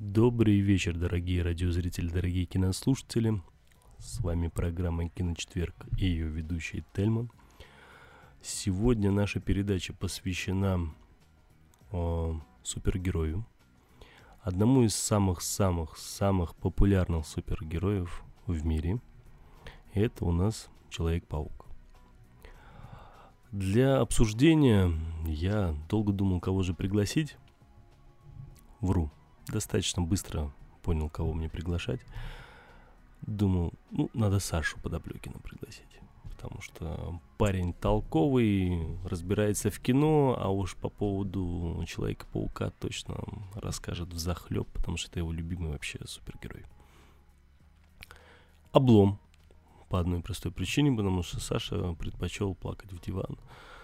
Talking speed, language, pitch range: 100 wpm, Russian, 80-105 Hz